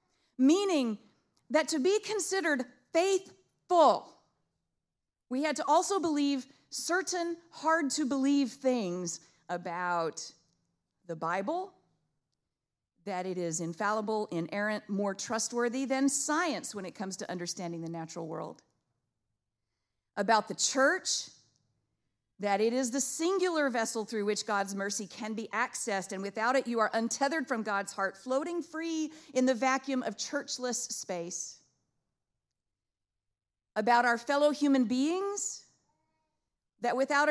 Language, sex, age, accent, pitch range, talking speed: English, female, 40-59, American, 175-280 Hz, 120 wpm